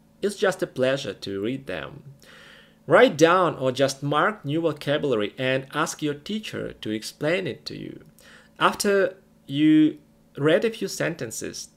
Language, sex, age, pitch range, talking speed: English, male, 30-49, 120-175 Hz, 150 wpm